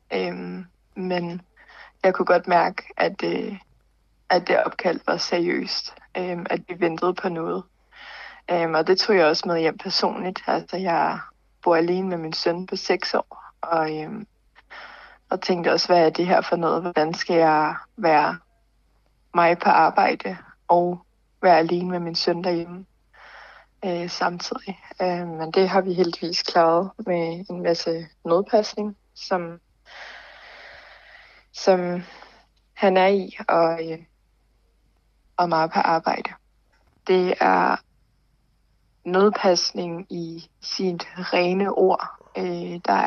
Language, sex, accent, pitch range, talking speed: Danish, female, native, 170-190 Hz, 130 wpm